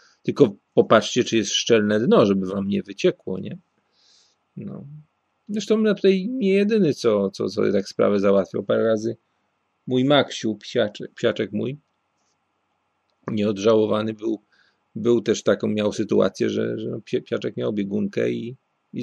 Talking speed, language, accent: 140 wpm, Polish, native